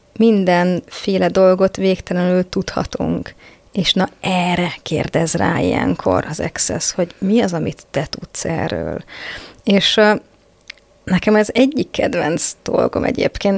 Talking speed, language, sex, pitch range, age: 115 wpm, Hungarian, female, 180-210 Hz, 30-49